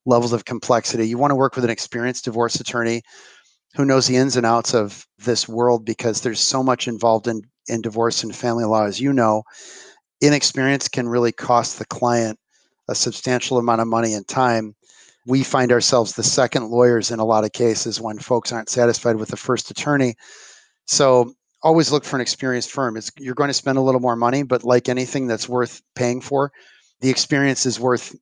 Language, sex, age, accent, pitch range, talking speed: English, male, 30-49, American, 115-130 Hz, 200 wpm